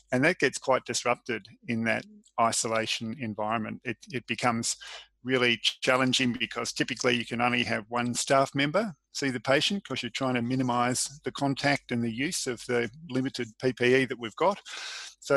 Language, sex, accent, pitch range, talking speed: English, male, Australian, 120-135 Hz, 170 wpm